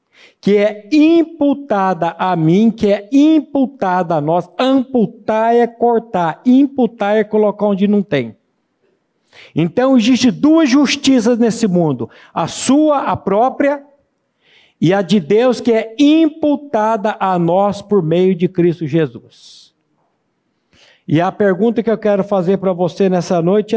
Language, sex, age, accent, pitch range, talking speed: Portuguese, male, 60-79, Brazilian, 175-235 Hz, 135 wpm